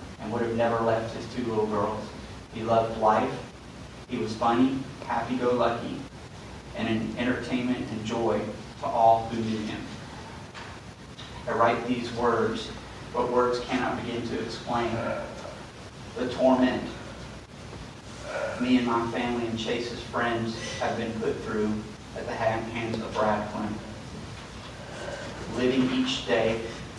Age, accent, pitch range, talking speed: 30-49, American, 110-120 Hz, 125 wpm